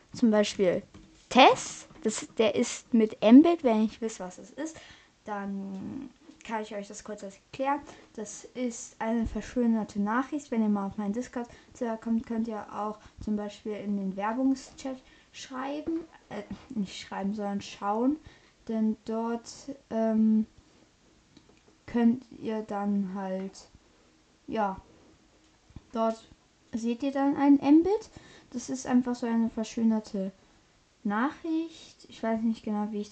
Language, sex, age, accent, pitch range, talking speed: German, female, 10-29, German, 210-255 Hz, 135 wpm